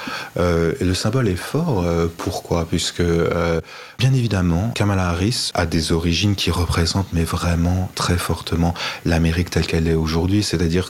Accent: French